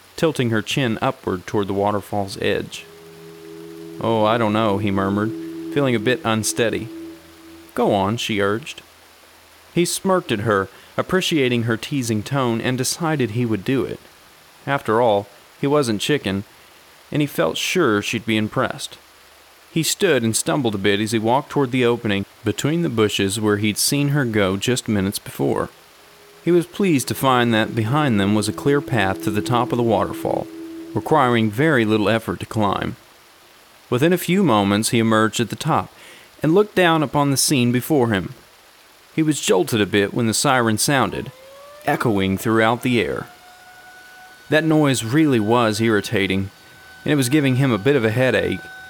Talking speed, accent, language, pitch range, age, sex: 170 wpm, American, English, 105-150 Hz, 30-49, male